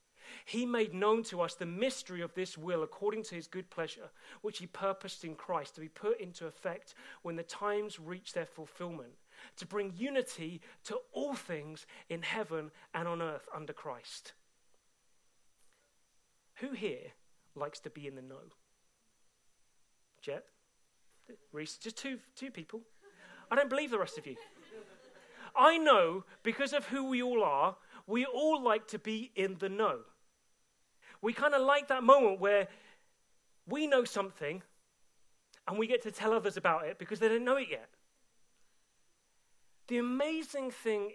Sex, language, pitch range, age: male, English, 170-260 Hz, 40-59